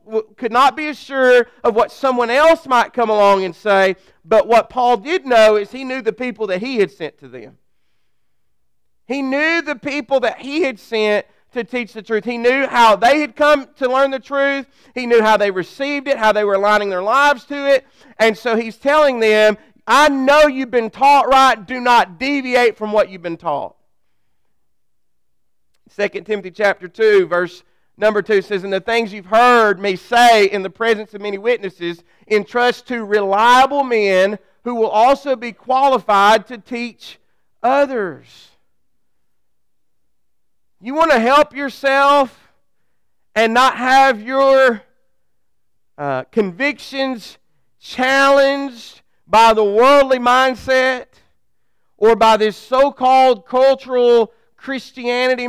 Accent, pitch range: American, 210-265 Hz